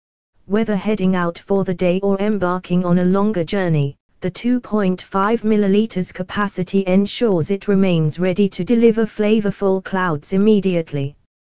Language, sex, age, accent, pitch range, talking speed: English, female, 20-39, British, 175-210 Hz, 125 wpm